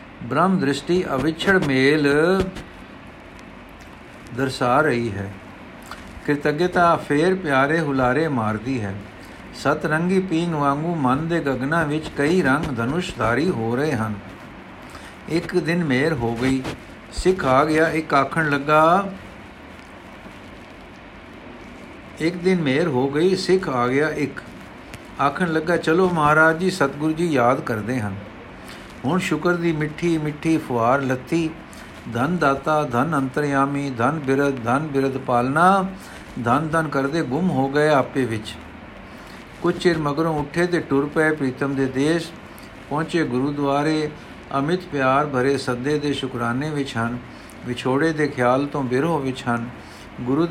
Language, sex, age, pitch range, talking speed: Punjabi, male, 60-79, 130-160 Hz, 125 wpm